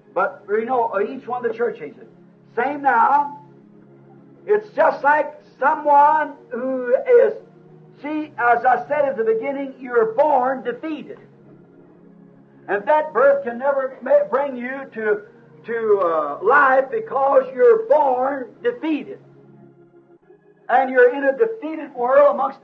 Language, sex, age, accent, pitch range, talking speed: English, male, 60-79, American, 235-305 Hz, 125 wpm